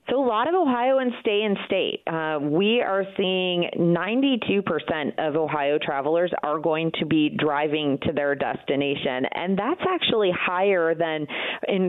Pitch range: 145-180 Hz